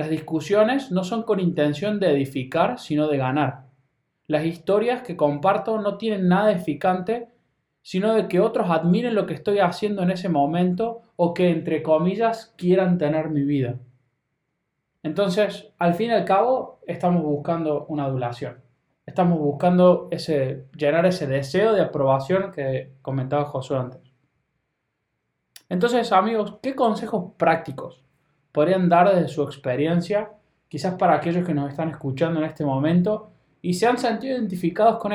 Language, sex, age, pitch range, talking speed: Spanish, male, 20-39, 145-190 Hz, 145 wpm